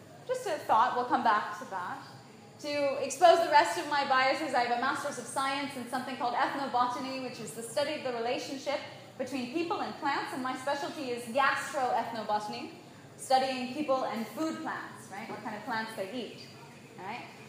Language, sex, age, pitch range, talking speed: English, female, 20-39, 235-285 Hz, 185 wpm